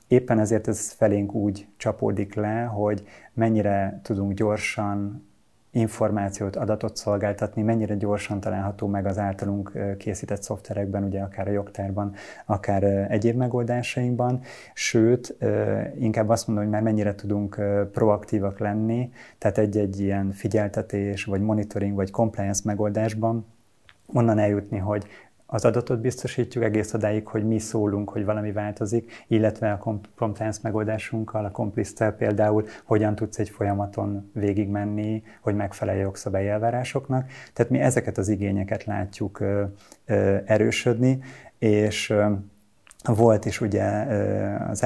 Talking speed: 120 wpm